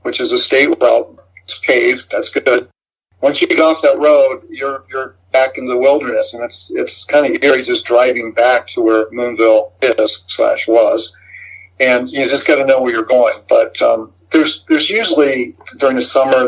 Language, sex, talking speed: English, male, 195 wpm